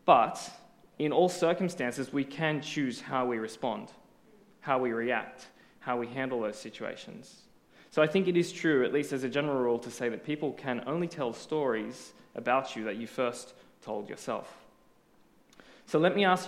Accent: Australian